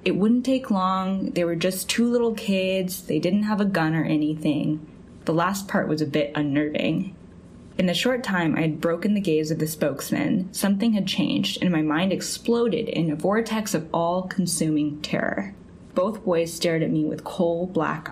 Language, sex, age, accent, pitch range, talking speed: English, female, 10-29, American, 160-215 Hz, 185 wpm